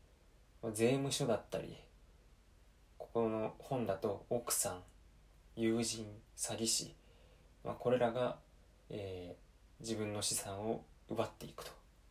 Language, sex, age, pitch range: Japanese, male, 20-39, 85-115 Hz